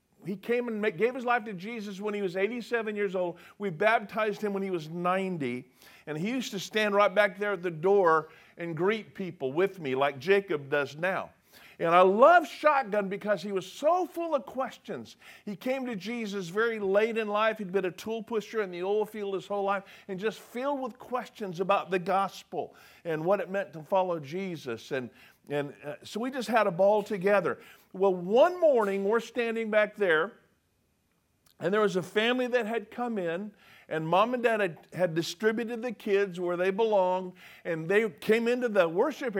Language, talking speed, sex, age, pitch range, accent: English, 200 wpm, male, 50-69, 175-220 Hz, American